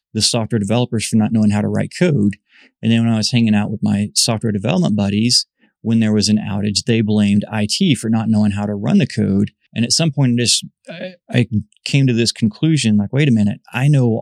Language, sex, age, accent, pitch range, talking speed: English, male, 30-49, American, 105-120 Hz, 230 wpm